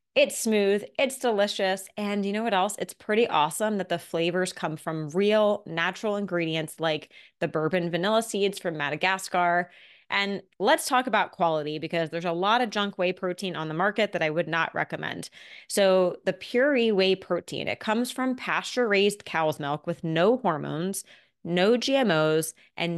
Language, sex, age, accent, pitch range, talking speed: English, female, 20-39, American, 170-215 Hz, 170 wpm